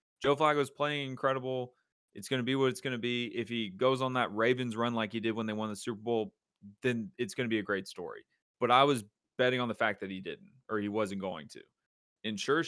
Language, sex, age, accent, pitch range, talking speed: English, male, 30-49, American, 110-160 Hz, 255 wpm